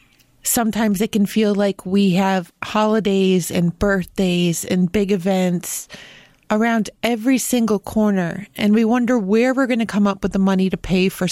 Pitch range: 190-220 Hz